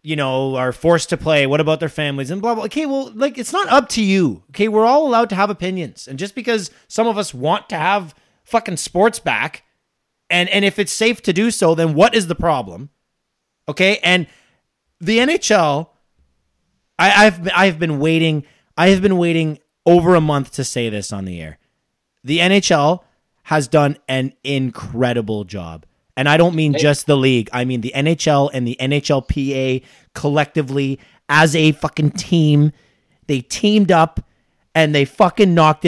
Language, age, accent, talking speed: English, 30-49, American, 180 wpm